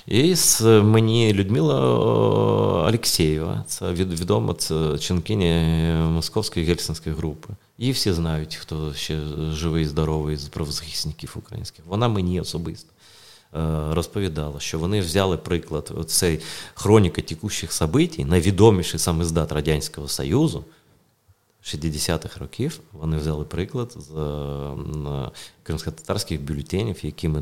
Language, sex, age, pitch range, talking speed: Ukrainian, male, 30-49, 80-95 Hz, 105 wpm